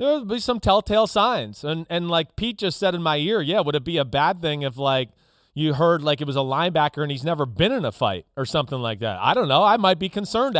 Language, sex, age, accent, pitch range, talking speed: English, male, 30-49, American, 140-190 Hz, 270 wpm